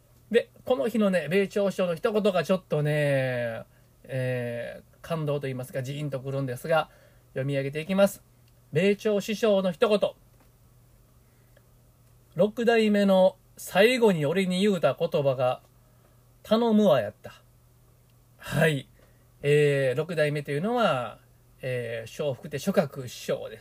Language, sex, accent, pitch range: Japanese, male, native, 125-195 Hz